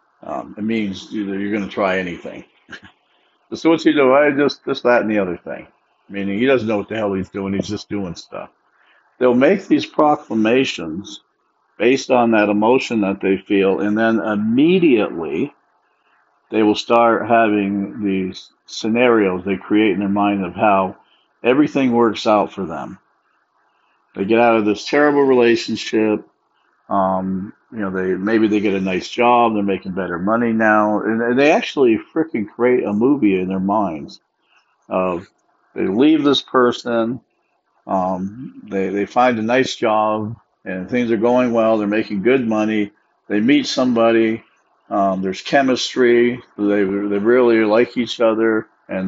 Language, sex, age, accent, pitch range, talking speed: English, male, 50-69, American, 100-120 Hz, 160 wpm